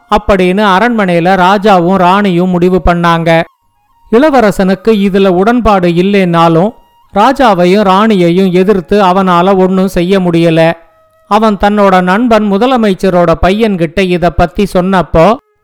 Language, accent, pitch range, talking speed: Tamil, native, 180-220 Hz, 95 wpm